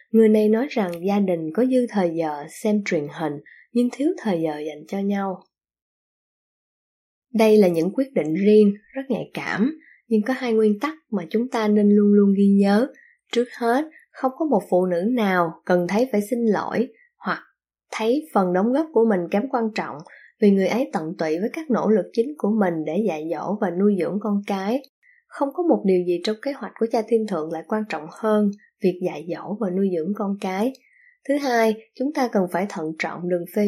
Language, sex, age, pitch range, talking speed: Vietnamese, female, 20-39, 180-240 Hz, 210 wpm